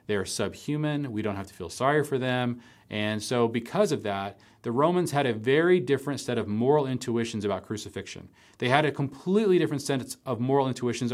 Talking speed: 200 wpm